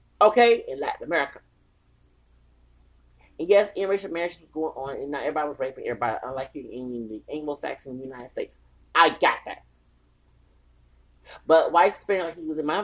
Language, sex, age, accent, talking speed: English, male, 30-49, American, 165 wpm